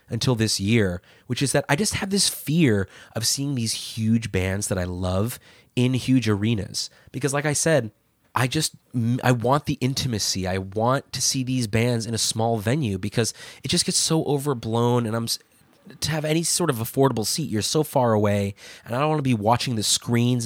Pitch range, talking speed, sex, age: 105-130 Hz, 205 wpm, male, 20-39